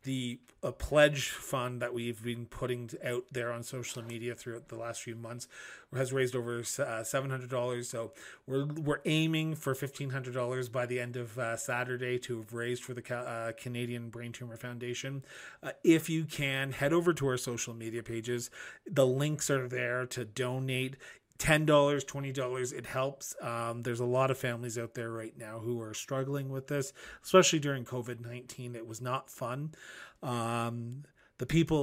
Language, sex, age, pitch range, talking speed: English, male, 30-49, 120-135 Hz, 170 wpm